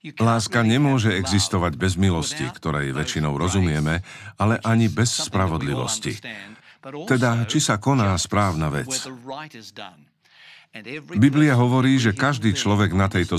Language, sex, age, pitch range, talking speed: Slovak, male, 50-69, 95-125 Hz, 110 wpm